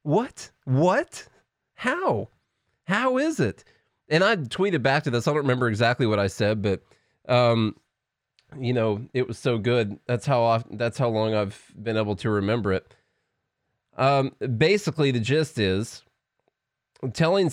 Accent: American